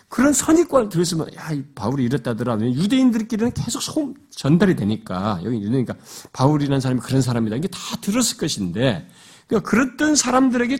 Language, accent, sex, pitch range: Korean, native, male, 115-195 Hz